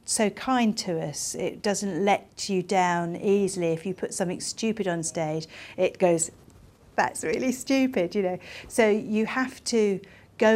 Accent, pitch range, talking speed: British, 170-205 Hz, 165 wpm